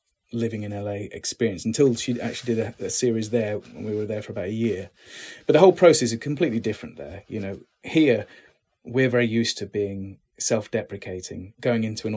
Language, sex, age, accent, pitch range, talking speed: English, male, 30-49, British, 100-120 Hz, 195 wpm